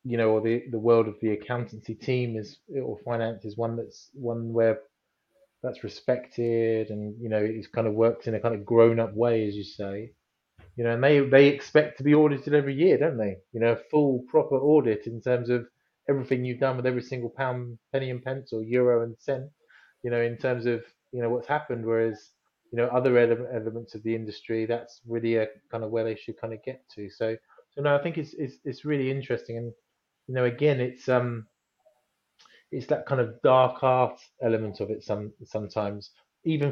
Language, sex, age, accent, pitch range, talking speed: English, male, 20-39, British, 115-135 Hz, 210 wpm